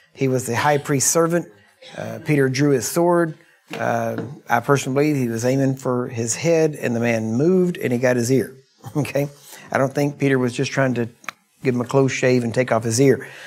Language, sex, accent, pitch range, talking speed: English, male, American, 125-150 Hz, 220 wpm